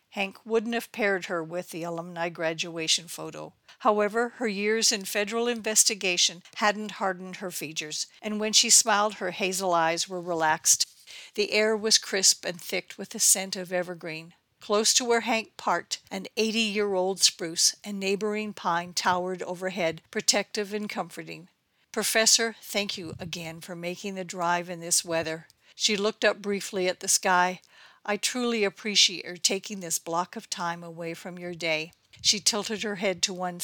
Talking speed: 165 wpm